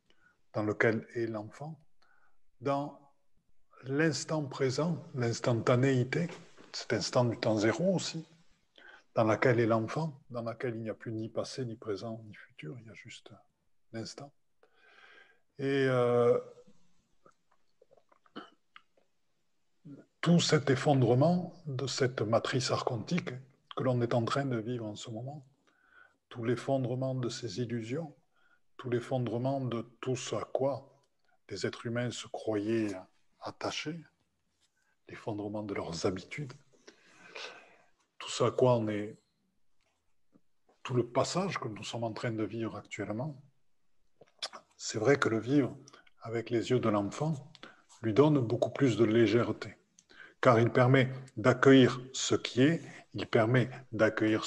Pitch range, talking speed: 115-145 Hz, 130 wpm